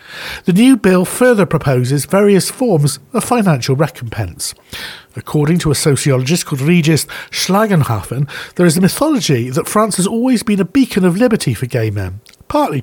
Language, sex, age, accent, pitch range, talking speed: English, male, 50-69, British, 145-200 Hz, 160 wpm